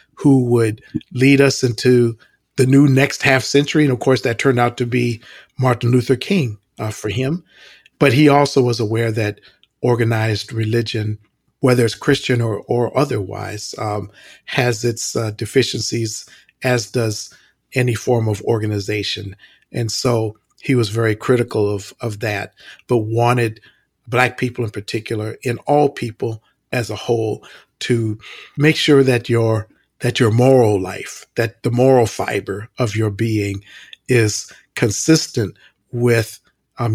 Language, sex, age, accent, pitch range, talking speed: English, male, 50-69, American, 110-125 Hz, 145 wpm